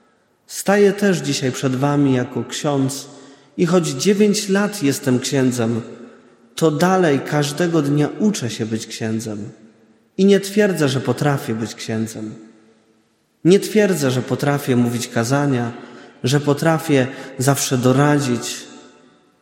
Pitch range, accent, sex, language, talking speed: 120-175 Hz, native, male, Polish, 115 wpm